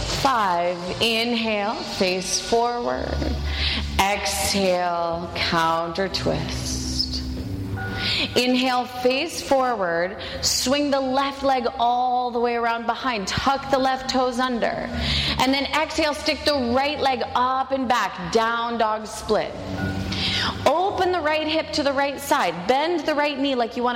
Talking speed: 130 wpm